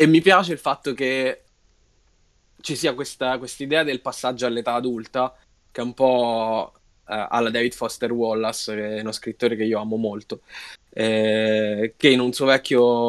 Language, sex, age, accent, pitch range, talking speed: Italian, male, 10-29, native, 110-130 Hz, 170 wpm